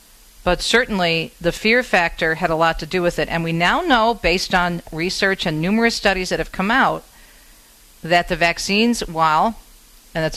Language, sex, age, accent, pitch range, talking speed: English, female, 50-69, American, 155-195 Hz, 185 wpm